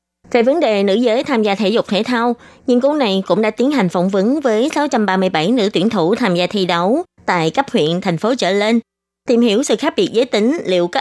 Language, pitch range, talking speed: Vietnamese, 180-240 Hz, 245 wpm